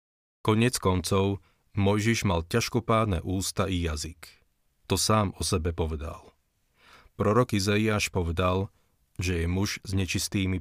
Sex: male